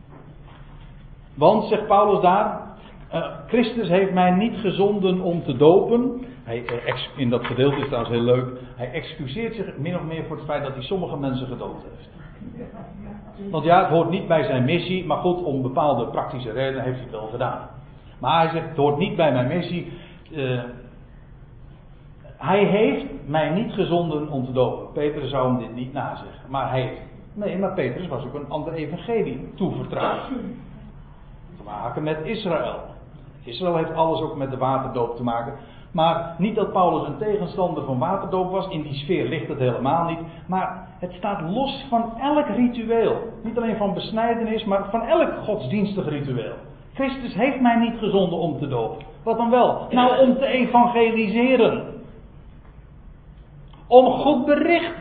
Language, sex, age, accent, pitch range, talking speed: Dutch, male, 60-79, Dutch, 135-205 Hz, 170 wpm